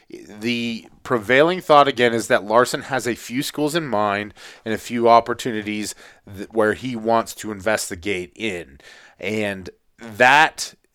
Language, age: English, 30-49